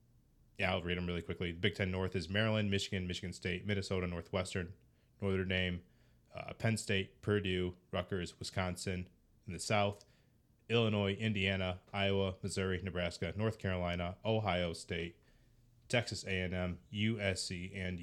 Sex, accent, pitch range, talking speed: male, American, 90-115 Hz, 135 wpm